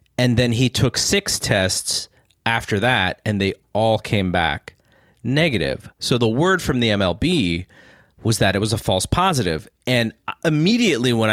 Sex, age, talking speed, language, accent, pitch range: male, 30-49, 160 wpm, English, American, 100-130 Hz